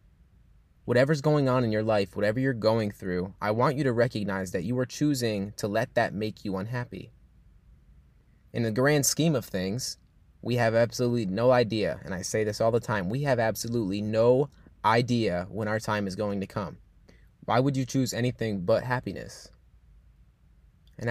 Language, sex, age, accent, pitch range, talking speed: English, male, 20-39, American, 105-125 Hz, 180 wpm